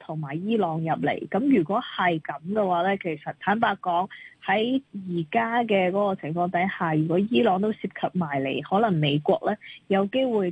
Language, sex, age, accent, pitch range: Chinese, female, 20-39, native, 170-215 Hz